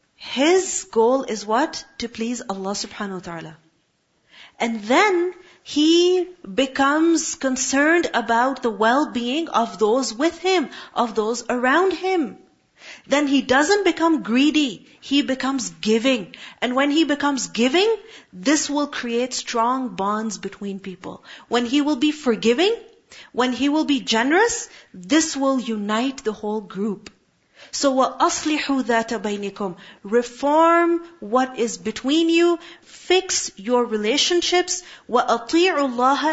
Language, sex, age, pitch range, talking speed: English, female, 40-59, 230-320 Hz, 130 wpm